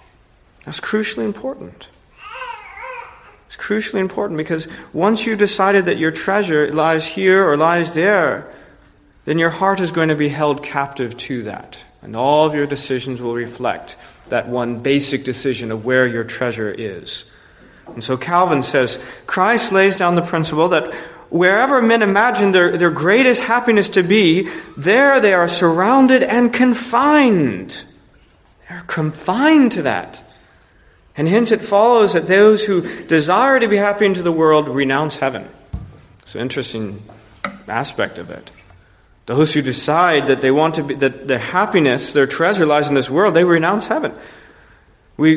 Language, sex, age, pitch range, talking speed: English, male, 40-59, 135-205 Hz, 155 wpm